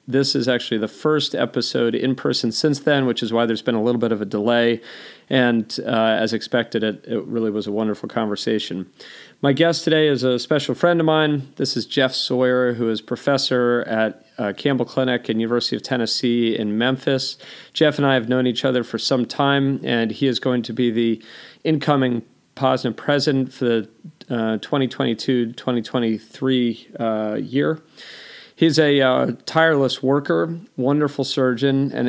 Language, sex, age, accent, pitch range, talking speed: English, male, 40-59, American, 115-140 Hz, 170 wpm